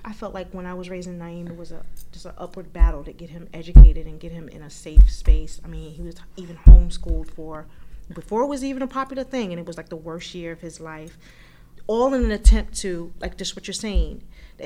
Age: 30-49